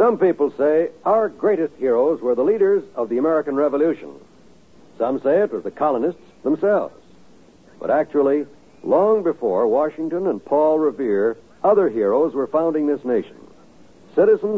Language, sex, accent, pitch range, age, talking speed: English, male, American, 145-195 Hz, 70-89, 145 wpm